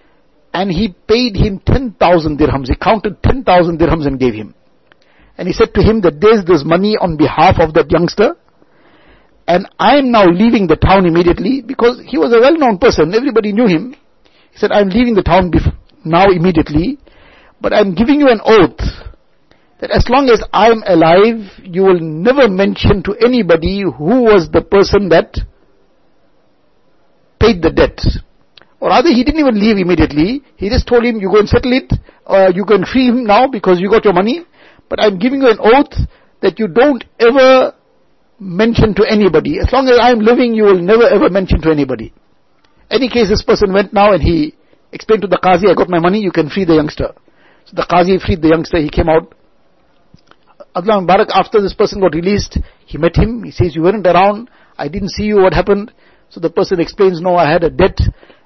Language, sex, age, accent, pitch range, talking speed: English, male, 60-79, Indian, 175-230 Hz, 200 wpm